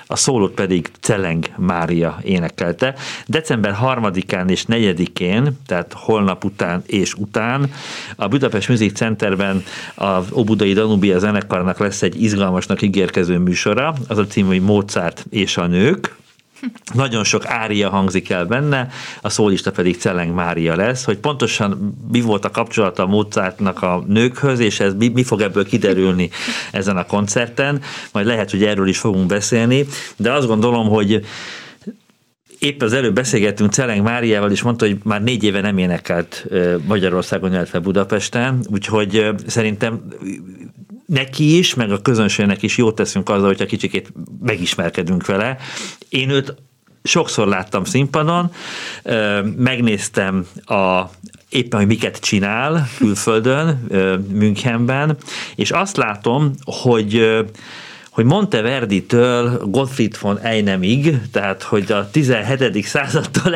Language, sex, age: Hungarian, male, 50-69